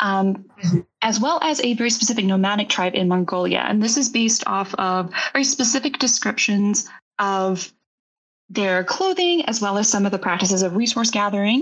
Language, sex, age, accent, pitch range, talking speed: English, female, 10-29, American, 190-265 Hz, 170 wpm